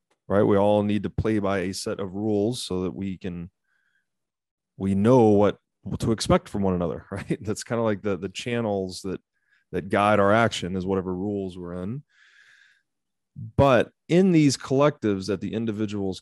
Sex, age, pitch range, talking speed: male, 30-49, 95-115 Hz, 180 wpm